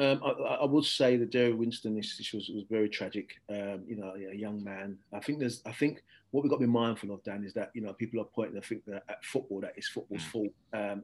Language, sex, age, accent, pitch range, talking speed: English, male, 30-49, British, 105-115 Hz, 270 wpm